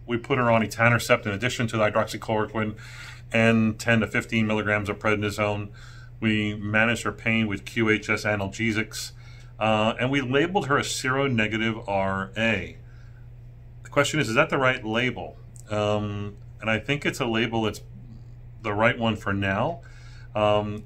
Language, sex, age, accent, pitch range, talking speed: English, male, 40-59, American, 105-120 Hz, 160 wpm